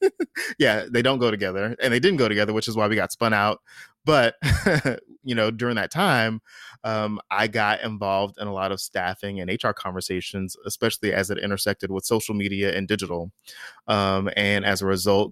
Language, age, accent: English, 20-39, American